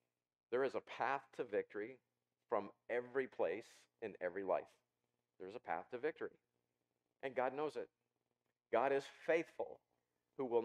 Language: English